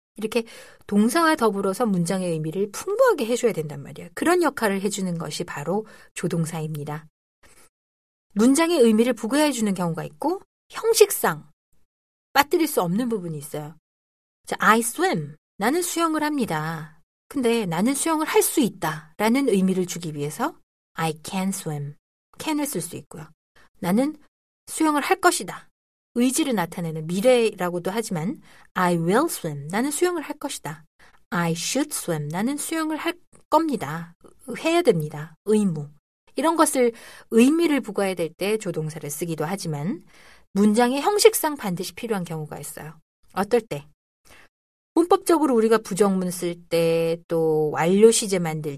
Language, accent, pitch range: Korean, native, 165-270 Hz